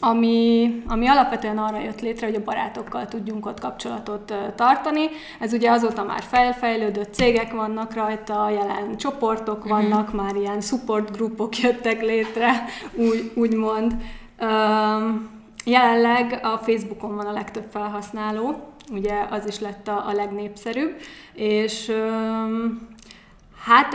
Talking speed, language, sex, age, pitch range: 115 wpm, Hungarian, female, 20-39, 210-230 Hz